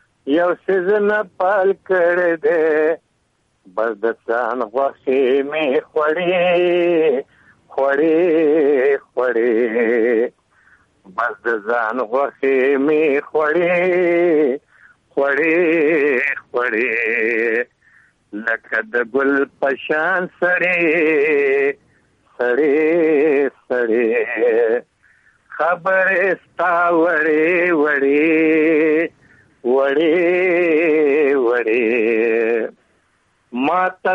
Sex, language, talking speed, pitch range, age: male, Urdu, 40 wpm, 155-200 Hz, 50-69